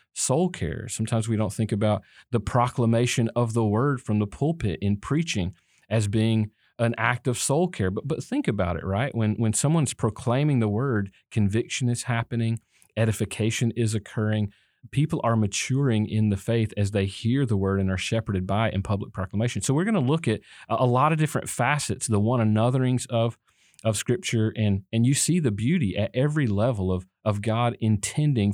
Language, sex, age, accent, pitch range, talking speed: English, male, 40-59, American, 105-130 Hz, 190 wpm